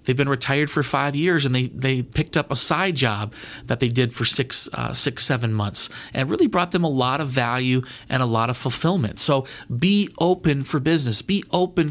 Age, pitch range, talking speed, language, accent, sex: 40-59, 125-170 Hz, 215 wpm, English, American, male